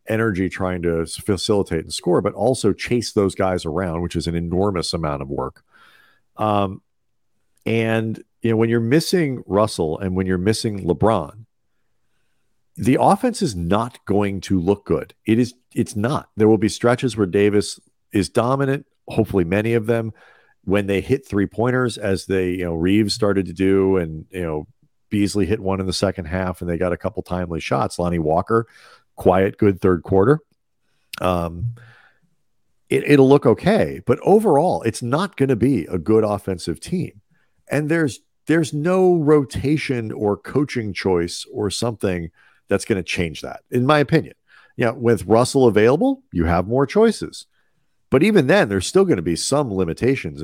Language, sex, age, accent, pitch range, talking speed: English, male, 50-69, American, 95-120 Hz, 170 wpm